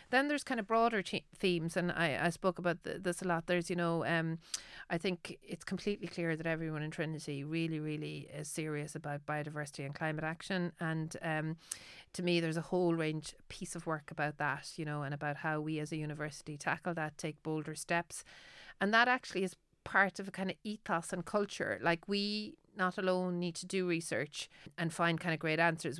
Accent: Irish